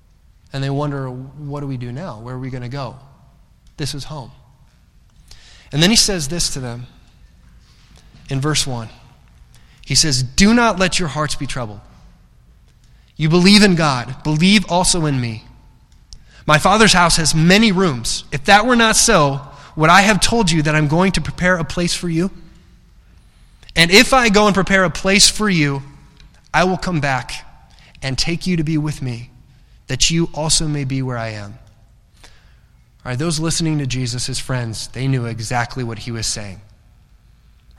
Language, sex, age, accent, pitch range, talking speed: English, male, 20-39, American, 125-165 Hz, 180 wpm